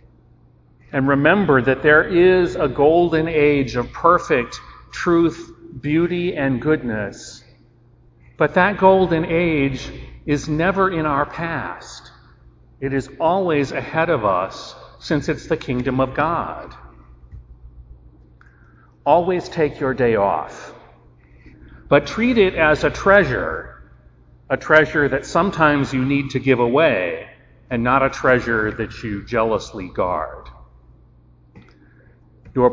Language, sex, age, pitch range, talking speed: English, male, 40-59, 110-160 Hz, 115 wpm